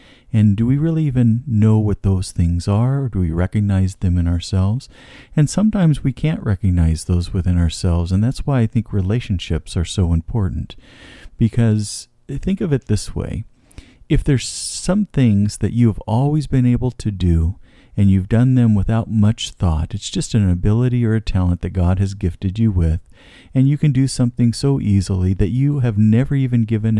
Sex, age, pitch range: male, 50-69, 95-125 Hz